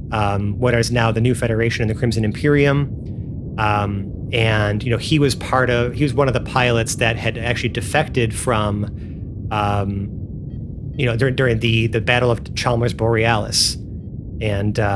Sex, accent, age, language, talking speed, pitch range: male, American, 30-49, English, 165 wpm, 105-130 Hz